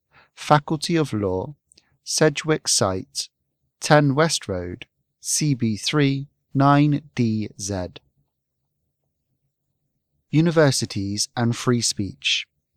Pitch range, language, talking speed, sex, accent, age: 105-145 Hz, English, 60 wpm, male, British, 30-49